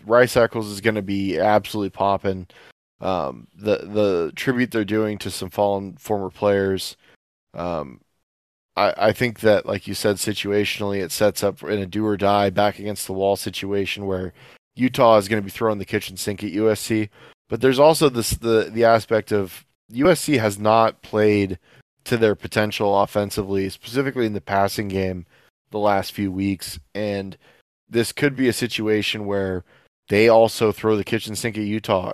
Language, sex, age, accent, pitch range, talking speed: English, male, 20-39, American, 100-115 Hz, 165 wpm